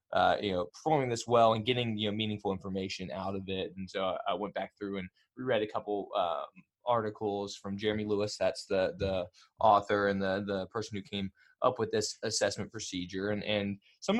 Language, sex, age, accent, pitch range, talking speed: English, male, 20-39, American, 95-115 Hz, 205 wpm